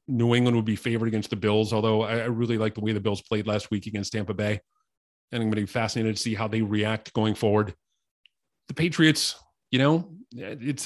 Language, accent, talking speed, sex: English, American, 220 wpm, male